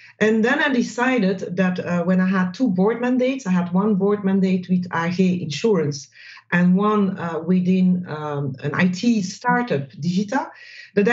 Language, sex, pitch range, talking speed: English, female, 160-210 Hz, 160 wpm